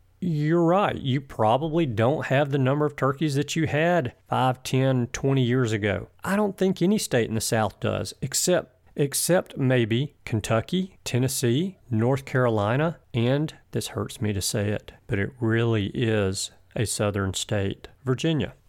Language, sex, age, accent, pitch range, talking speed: English, male, 40-59, American, 100-130 Hz, 155 wpm